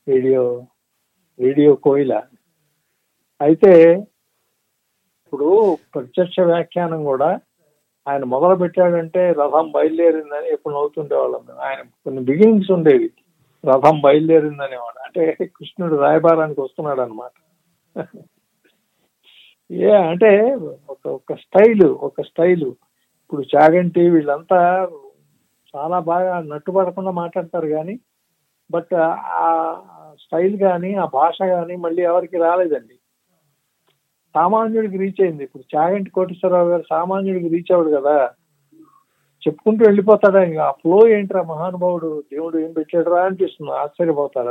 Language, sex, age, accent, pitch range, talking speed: Telugu, male, 50-69, native, 150-190 Hz, 100 wpm